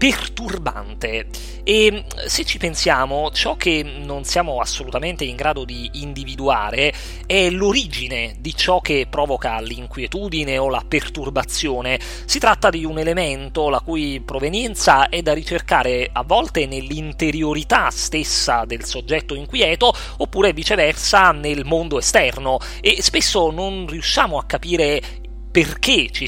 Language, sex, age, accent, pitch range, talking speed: Italian, male, 30-49, native, 140-185 Hz, 125 wpm